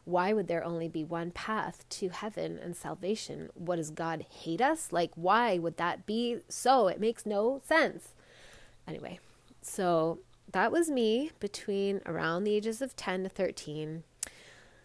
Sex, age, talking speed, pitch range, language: female, 20-39, 160 wpm, 165-195 Hz, English